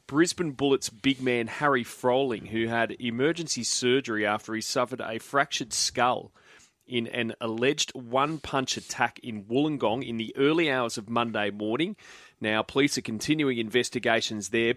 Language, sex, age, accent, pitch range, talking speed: English, male, 30-49, Australian, 105-130 Hz, 145 wpm